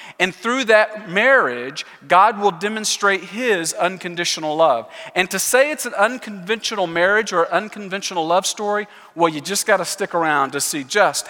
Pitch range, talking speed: 165-210 Hz, 165 wpm